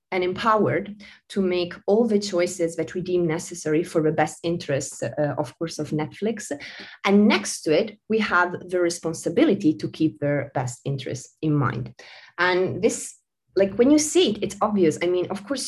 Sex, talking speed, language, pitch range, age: female, 185 wpm, English, 150-195 Hz, 30-49